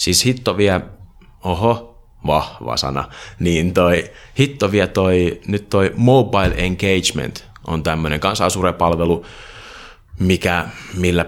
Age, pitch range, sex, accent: 30-49, 80-100 Hz, male, native